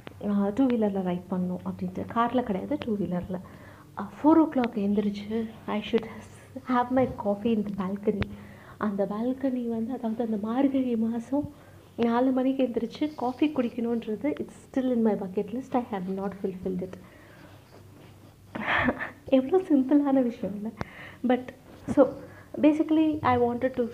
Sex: female